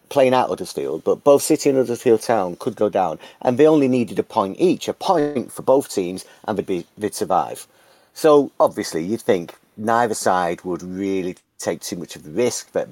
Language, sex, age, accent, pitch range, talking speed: English, male, 40-59, British, 100-145 Hz, 210 wpm